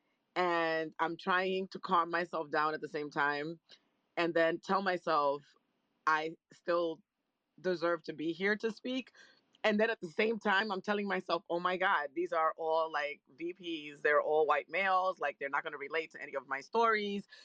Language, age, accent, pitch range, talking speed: English, 30-49, American, 160-195 Hz, 185 wpm